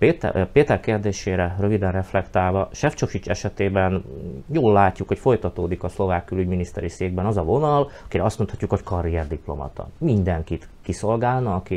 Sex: male